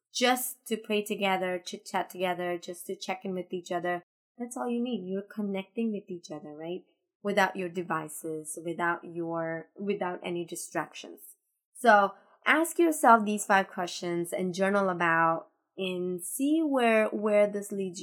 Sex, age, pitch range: female, 20-39, 180-215 Hz